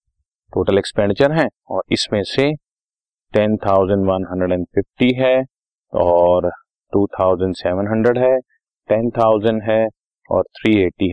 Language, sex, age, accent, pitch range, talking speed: Hindi, male, 30-49, native, 95-125 Hz, 80 wpm